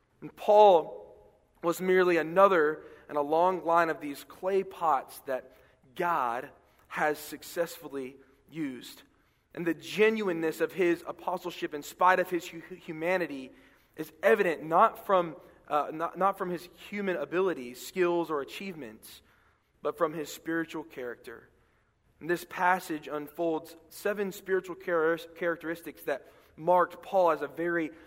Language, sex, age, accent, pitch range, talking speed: English, male, 20-39, American, 145-175 Hz, 135 wpm